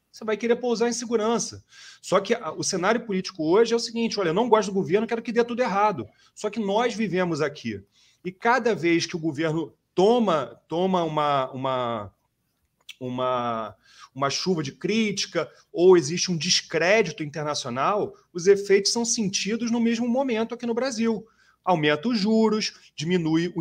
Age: 30-49